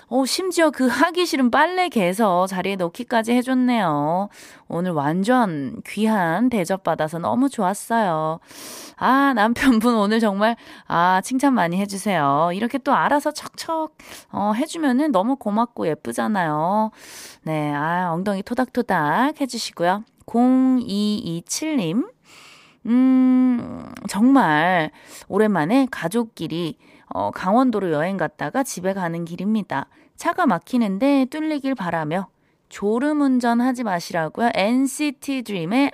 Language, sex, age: Korean, female, 20-39